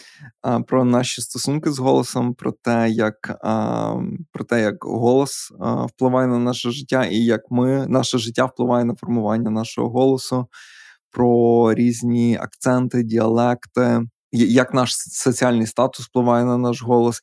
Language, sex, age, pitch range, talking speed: Ukrainian, male, 20-39, 115-125 Hz, 120 wpm